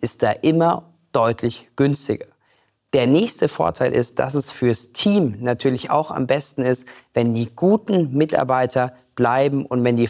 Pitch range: 120-150 Hz